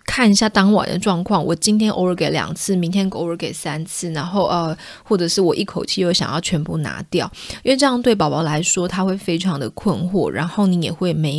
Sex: female